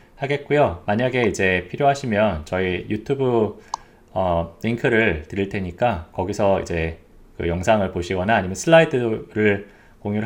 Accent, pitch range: native, 95-135 Hz